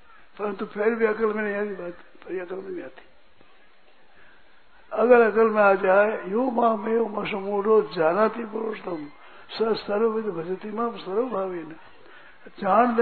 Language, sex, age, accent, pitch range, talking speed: Hindi, male, 60-79, native, 190-225 Hz, 50 wpm